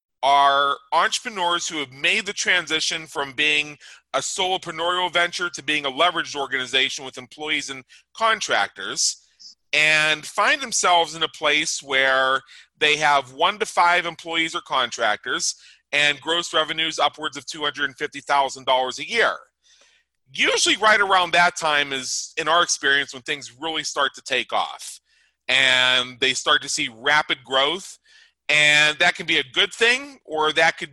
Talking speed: 150 wpm